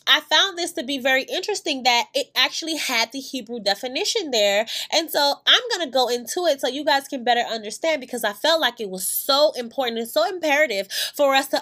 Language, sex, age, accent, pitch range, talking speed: English, female, 20-39, American, 240-315 Hz, 220 wpm